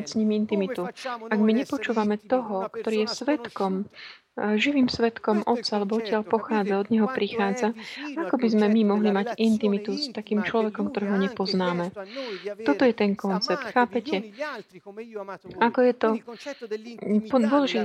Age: 30-49